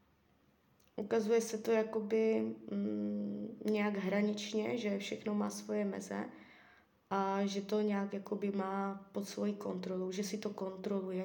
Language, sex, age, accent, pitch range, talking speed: Czech, female, 20-39, native, 195-230 Hz, 135 wpm